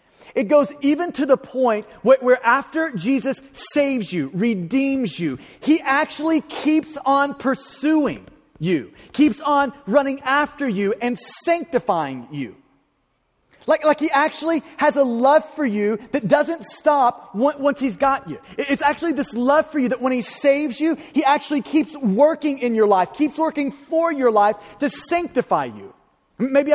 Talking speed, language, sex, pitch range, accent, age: 155 wpm, English, male, 225-290 Hz, American, 30-49